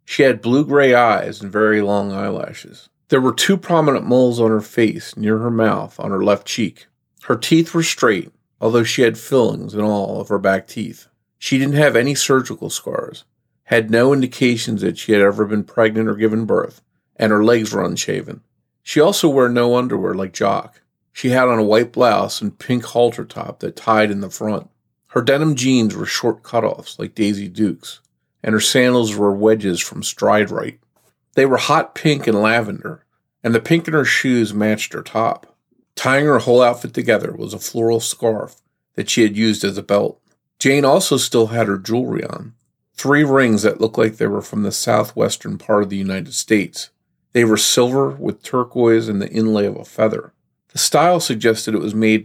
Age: 40-59